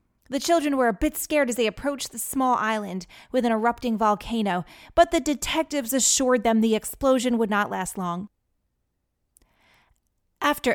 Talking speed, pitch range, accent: 155 wpm, 190-250 Hz, American